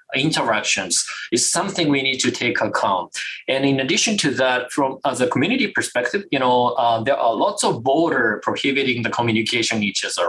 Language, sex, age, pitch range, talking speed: English, male, 20-39, 125-170 Hz, 180 wpm